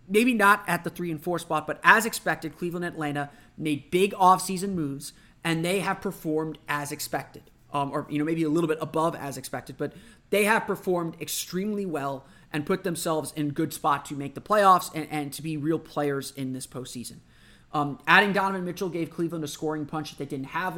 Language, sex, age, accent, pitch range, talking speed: English, male, 30-49, American, 145-175 Hz, 210 wpm